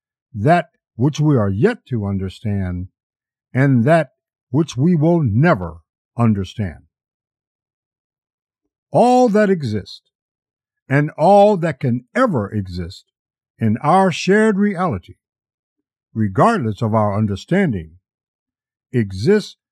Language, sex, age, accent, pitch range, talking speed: English, male, 60-79, American, 105-175 Hz, 95 wpm